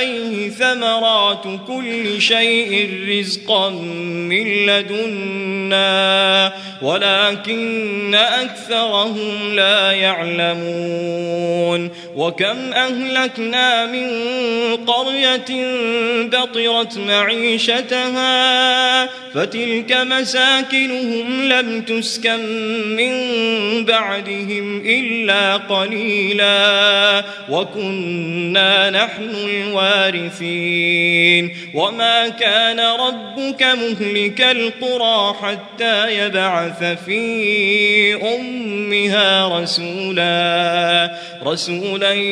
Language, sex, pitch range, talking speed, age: Arabic, male, 195-230 Hz, 50 wpm, 20-39